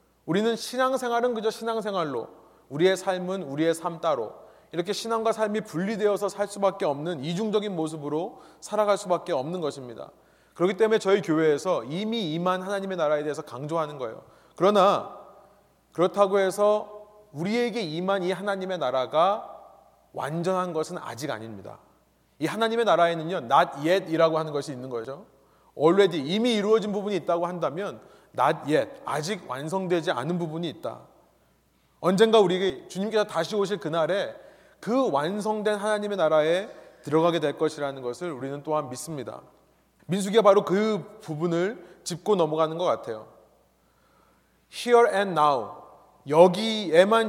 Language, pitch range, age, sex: Korean, 155-210 Hz, 30-49, male